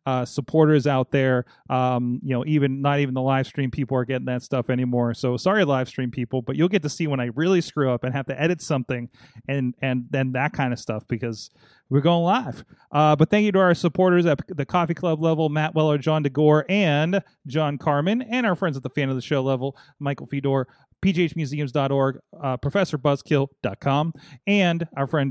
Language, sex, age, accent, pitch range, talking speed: English, male, 30-49, American, 130-185 Hz, 205 wpm